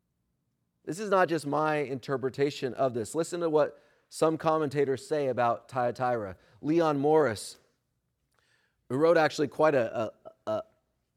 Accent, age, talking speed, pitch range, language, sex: American, 30-49, 135 wpm, 135-170 Hz, English, male